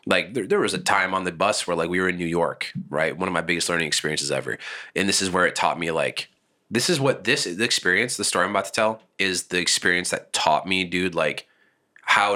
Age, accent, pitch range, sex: 20-39, American, 85-100 Hz, male